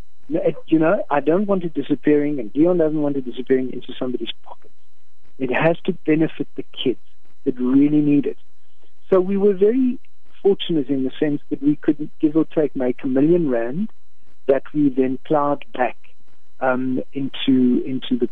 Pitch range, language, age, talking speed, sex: 130-170 Hz, English, 60-79, 175 wpm, male